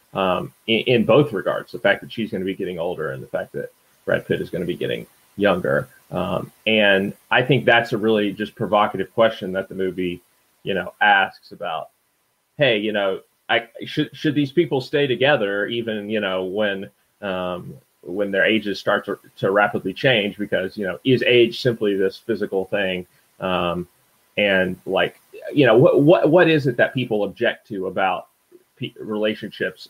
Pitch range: 95-120 Hz